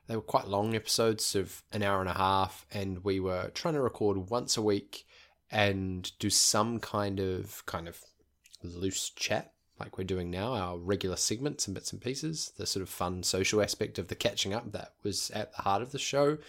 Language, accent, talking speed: English, Australian, 215 wpm